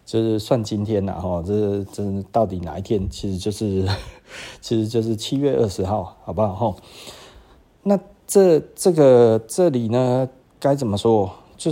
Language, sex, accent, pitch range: Chinese, male, native, 90-120 Hz